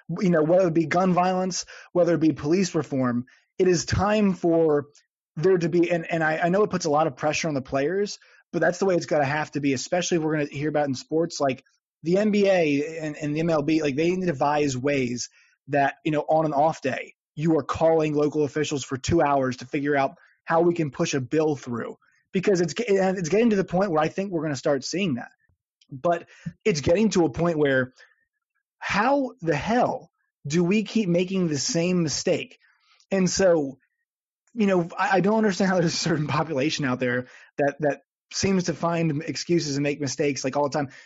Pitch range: 145-185 Hz